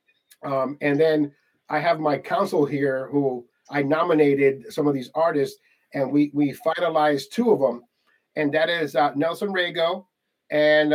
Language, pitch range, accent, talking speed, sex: English, 140-170 Hz, American, 160 wpm, male